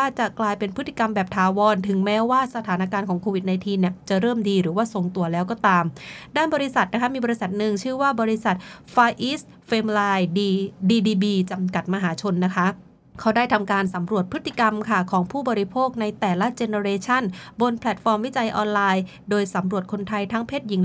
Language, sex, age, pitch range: English, female, 20-39, 190-230 Hz